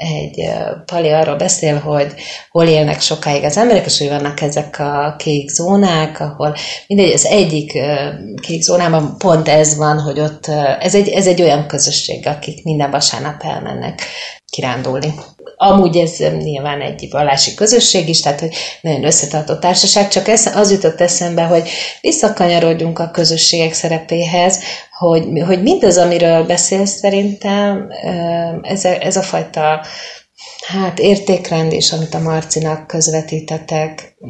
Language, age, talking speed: Hungarian, 30-49, 140 wpm